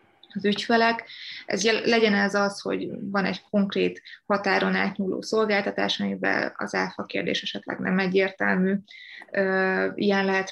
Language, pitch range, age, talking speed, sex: Hungarian, 175-200 Hz, 20-39, 125 wpm, female